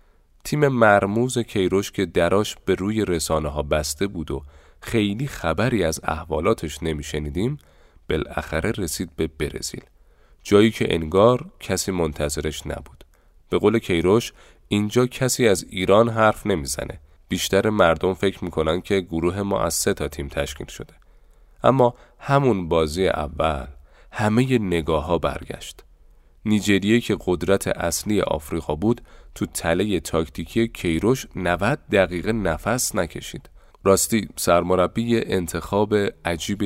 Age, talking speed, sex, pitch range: 30-49, 125 wpm, male, 80-110 Hz